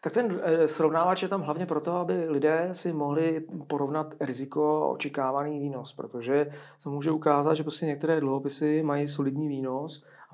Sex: male